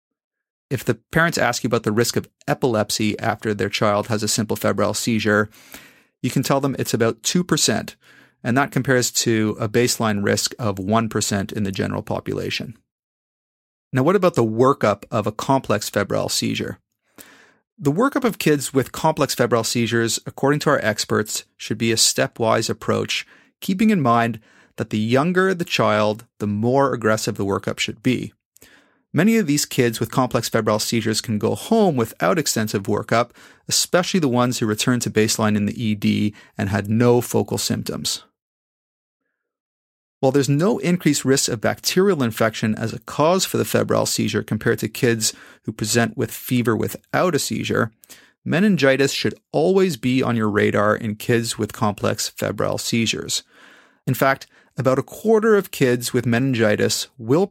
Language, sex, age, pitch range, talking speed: English, male, 30-49, 110-135 Hz, 165 wpm